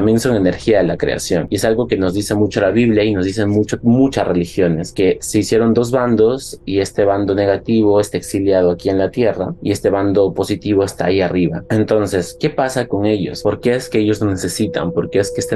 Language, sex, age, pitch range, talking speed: Spanish, male, 20-39, 90-105 Hz, 220 wpm